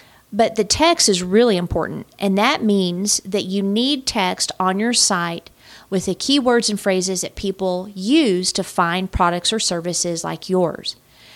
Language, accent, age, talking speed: English, American, 40-59, 165 wpm